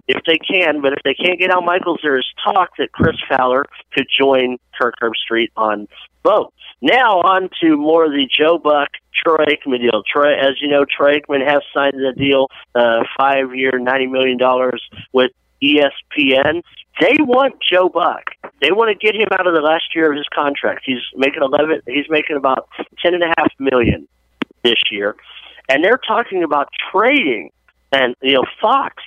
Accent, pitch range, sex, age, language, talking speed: American, 125-160 Hz, male, 50-69, English, 190 wpm